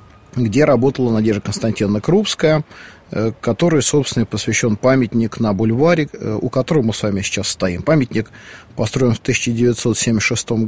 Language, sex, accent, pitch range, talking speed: Russian, male, native, 110-130 Hz, 125 wpm